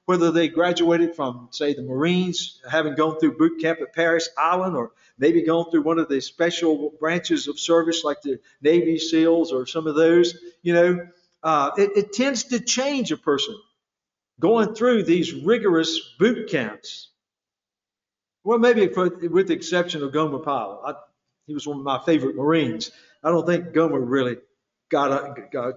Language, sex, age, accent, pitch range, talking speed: English, male, 50-69, American, 155-200 Hz, 170 wpm